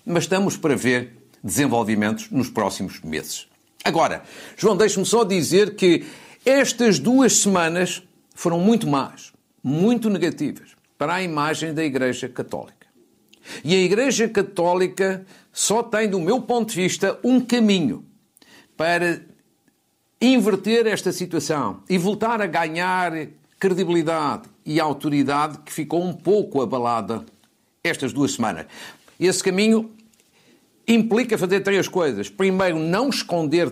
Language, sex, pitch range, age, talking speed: Portuguese, male, 150-205 Hz, 50-69, 125 wpm